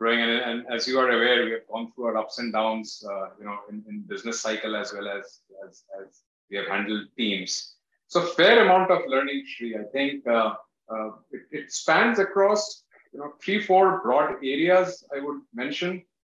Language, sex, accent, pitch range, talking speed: English, male, Indian, 110-145 Hz, 195 wpm